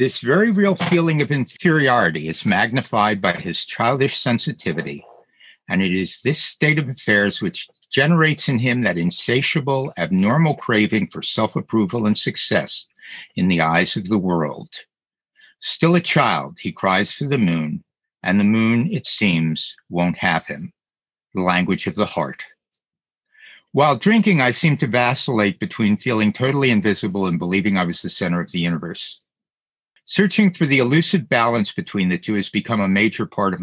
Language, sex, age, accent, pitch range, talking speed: English, male, 60-79, American, 100-165 Hz, 165 wpm